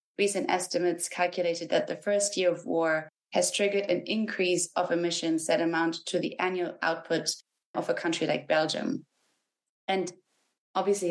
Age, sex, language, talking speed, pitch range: 20-39, female, English, 150 wpm, 165-195 Hz